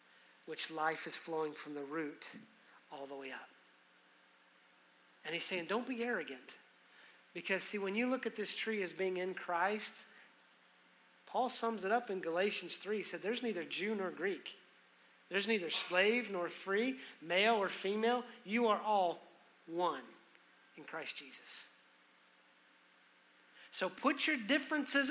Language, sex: English, male